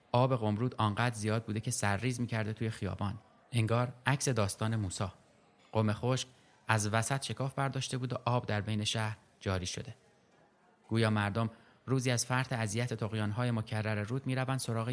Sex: male